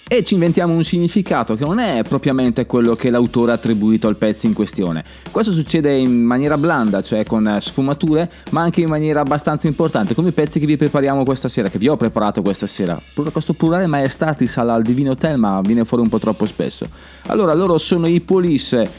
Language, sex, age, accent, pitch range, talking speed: Italian, male, 20-39, native, 115-155 Hz, 215 wpm